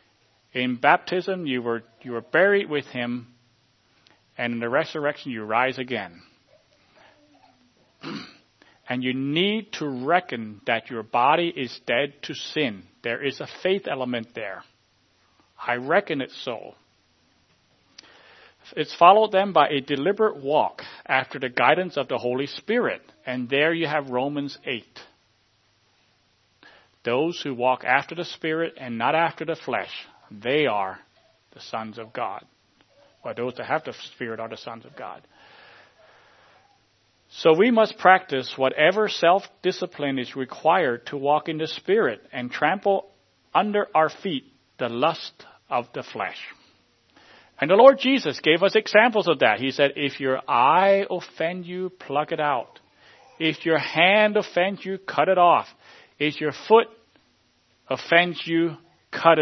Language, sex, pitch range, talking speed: English, male, 120-175 Hz, 145 wpm